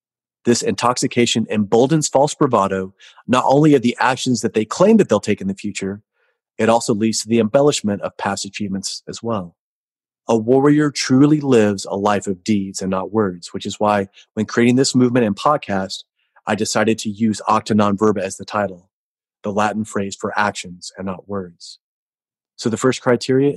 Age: 30-49